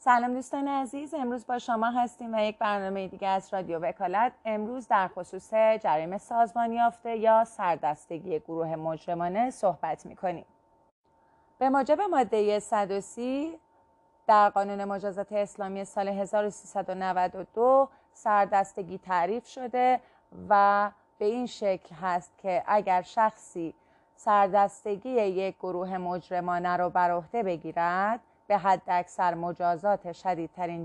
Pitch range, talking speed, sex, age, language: 175-220 Hz, 115 wpm, female, 30-49, Persian